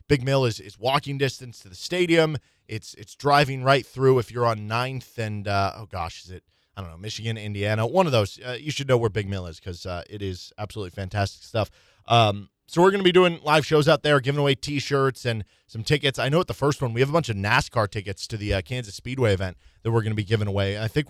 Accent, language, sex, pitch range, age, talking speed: American, English, male, 105-140 Hz, 20-39, 260 wpm